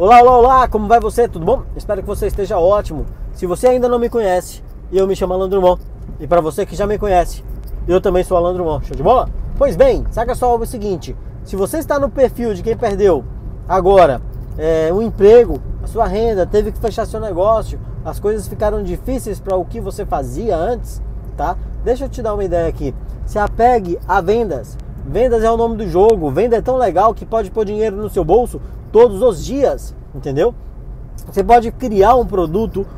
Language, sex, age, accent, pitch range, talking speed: Portuguese, male, 20-39, Brazilian, 175-235 Hz, 200 wpm